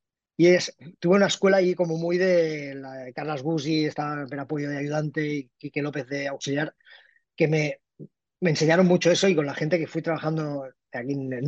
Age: 20-39